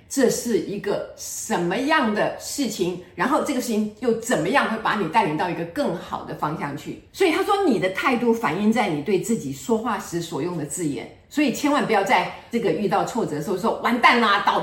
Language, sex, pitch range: Chinese, female, 160-240 Hz